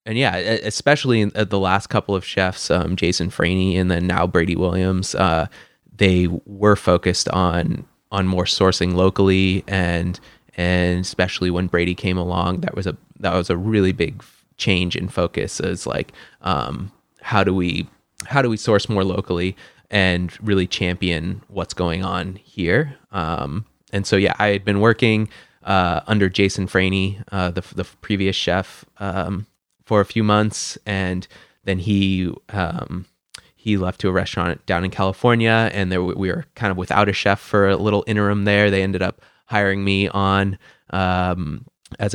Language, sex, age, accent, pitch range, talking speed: English, male, 20-39, American, 90-100 Hz, 170 wpm